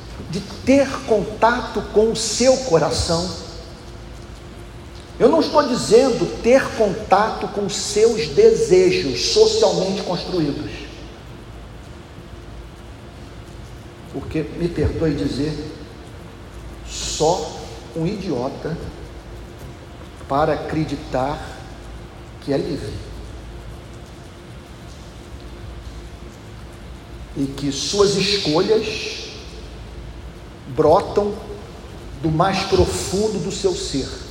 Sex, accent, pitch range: male, Brazilian, 140-215 Hz